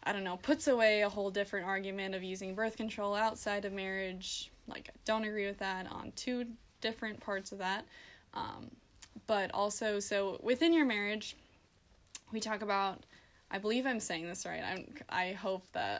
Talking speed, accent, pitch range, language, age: 180 wpm, American, 195-230 Hz, English, 10-29